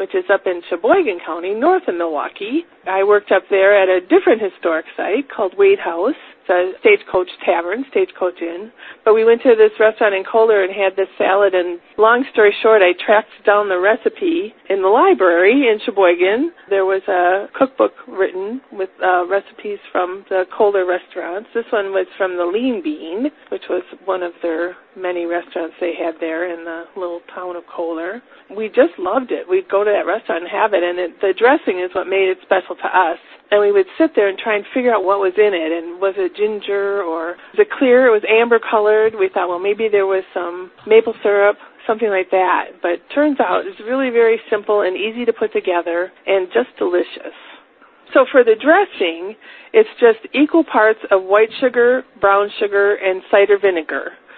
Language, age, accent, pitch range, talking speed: English, 40-59, American, 185-250 Hz, 200 wpm